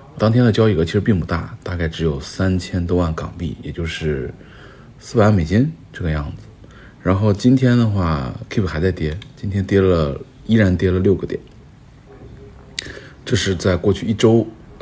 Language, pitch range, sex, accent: Chinese, 85-115 Hz, male, native